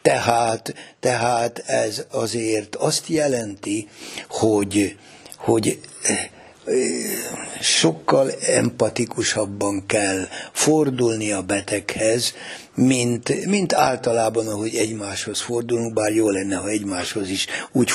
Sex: male